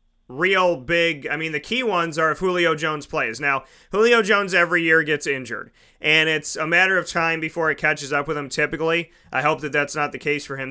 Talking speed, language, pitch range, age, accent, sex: 230 wpm, English, 145-170 Hz, 30-49, American, male